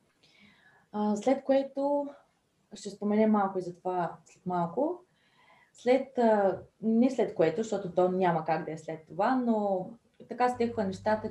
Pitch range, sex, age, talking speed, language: 165-210 Hz, female, 20-39, 140 wpm, Bulgarian